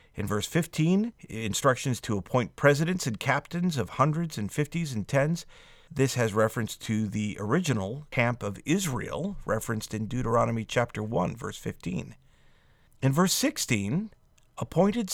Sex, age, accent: male, 50-69, American